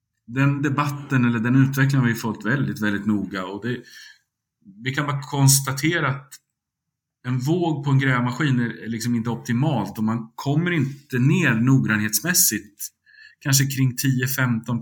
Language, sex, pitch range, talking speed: Swedish, male, 105-140 Hz, 145 wpm